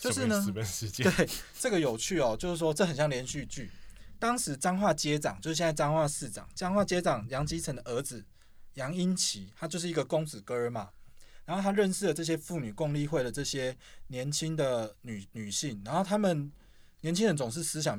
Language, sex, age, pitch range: Chinese, male, 20-39, 120-165 Hz